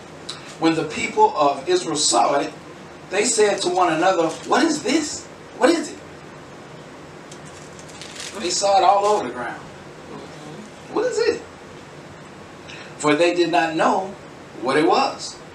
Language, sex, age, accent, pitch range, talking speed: English, male, 40-59, American, 145-195 Hz, 140 wpm